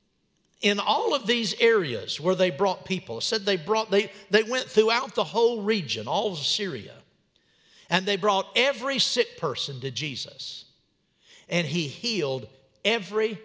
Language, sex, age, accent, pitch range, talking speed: English, male, 60-79, American, 145-205 Hz, 155 wpm